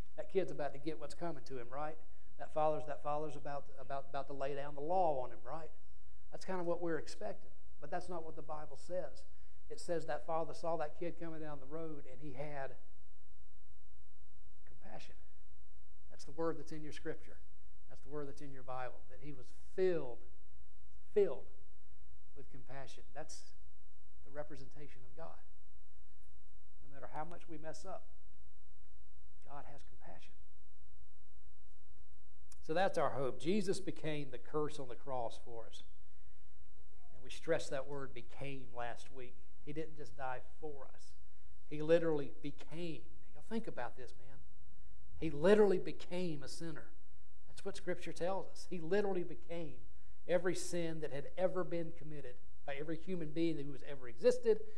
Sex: male